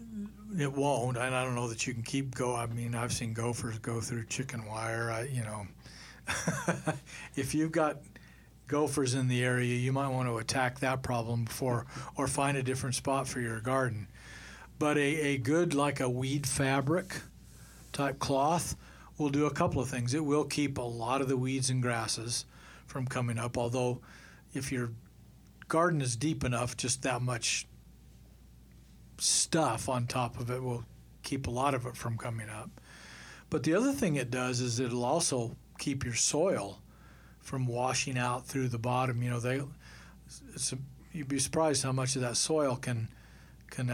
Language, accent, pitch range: English, American, 120-140 Hz